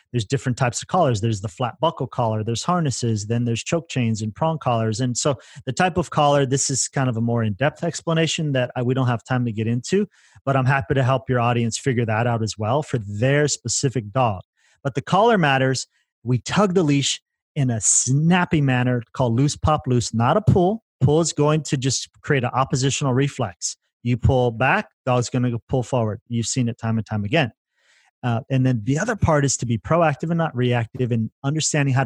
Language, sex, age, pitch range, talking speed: English, male, 30-49, 120-145 Hz, 215 wpm